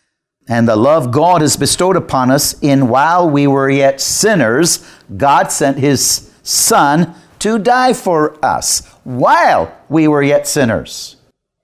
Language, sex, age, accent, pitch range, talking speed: English, male, 50-69, American, 125-165 Hz, 140 wpm